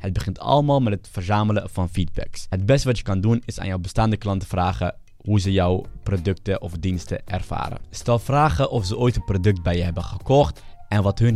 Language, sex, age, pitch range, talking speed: Dutch, male, 20-39, 95-110 Hz, 215 wpm